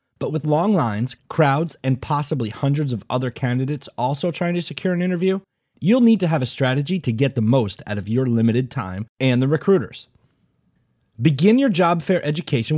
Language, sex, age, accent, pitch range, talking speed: English, male, 30-49, American, 120-165 Hz, 190 wpm